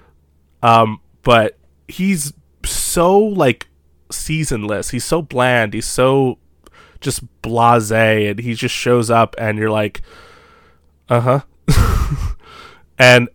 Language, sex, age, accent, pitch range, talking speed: English, male, 20-39, American, 110-135 Hz, 105 wpm